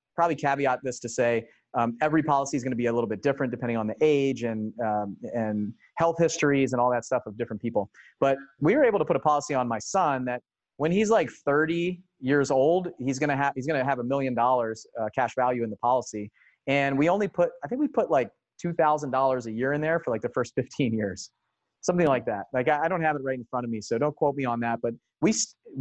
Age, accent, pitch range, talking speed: 30-49, American, 120-150 Hz, 260 wpm